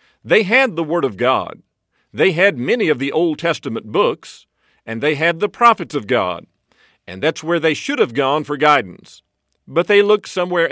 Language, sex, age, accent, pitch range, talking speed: English, male, 50-69, American, 150-215 Hz, 190 wpm